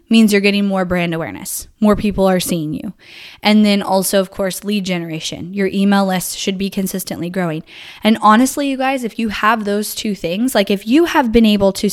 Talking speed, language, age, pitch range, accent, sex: 210 wpm, English, 10-29, 190-225 Hz, American, female